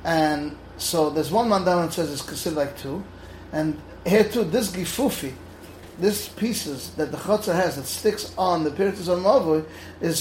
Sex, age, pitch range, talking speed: male, 30-49, 155-205 Hz, 175 wpm